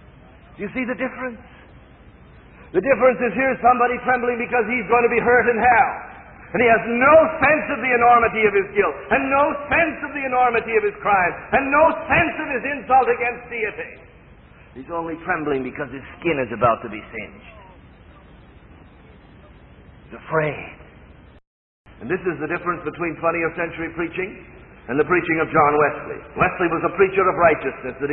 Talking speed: 175 wpm